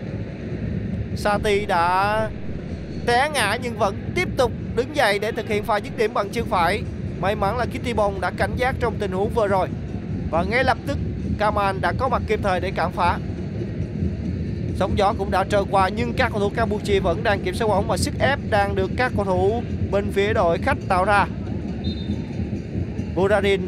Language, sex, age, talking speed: Vietnamese, male, 20-39, 195 wpm